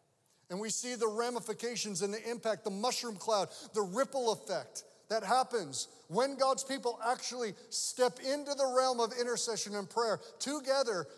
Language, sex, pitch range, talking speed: English, male, 170-225 Hz, 155 wpm